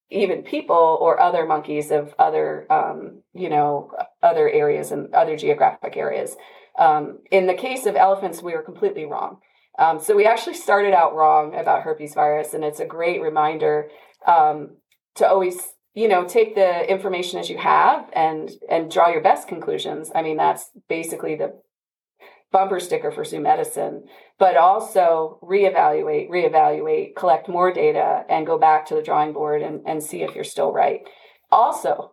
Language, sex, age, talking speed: English, female, 30-49, 170 wpm